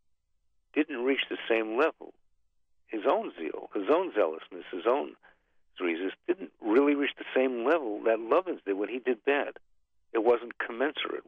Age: 50-69